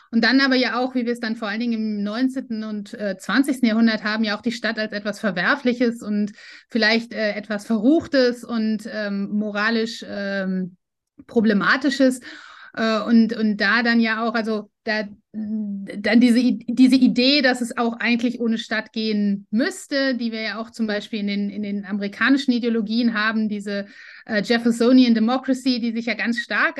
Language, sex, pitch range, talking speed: German, female, 220-265 Hz, 175 wpm